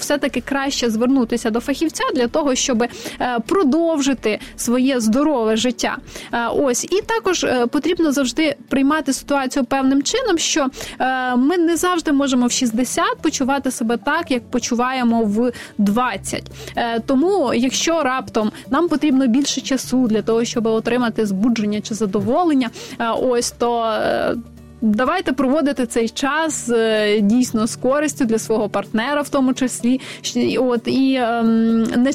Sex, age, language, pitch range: female, 20-39, Ukrainian, 230-285 Hz